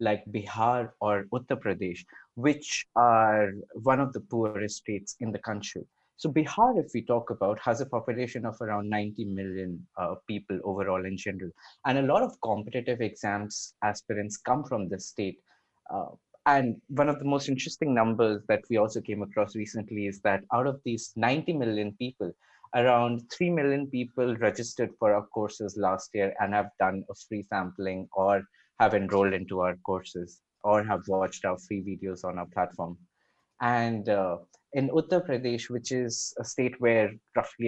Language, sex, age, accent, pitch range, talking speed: English, male, 20-39, Indian, 95-120 Hz, 170 wpm